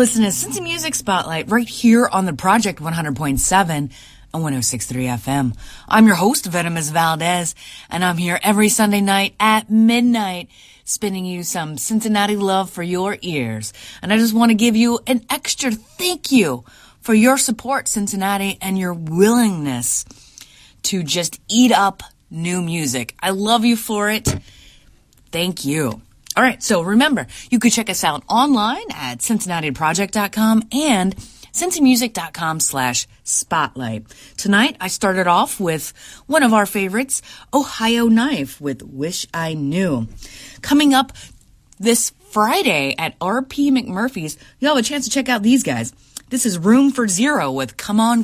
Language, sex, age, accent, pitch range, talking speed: English, female, 30-49, American, 150-235 Hz, 150 wpm